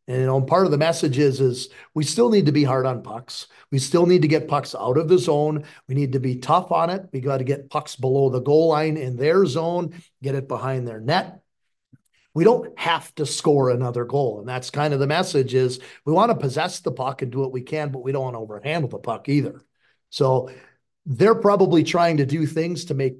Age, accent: 40-59, American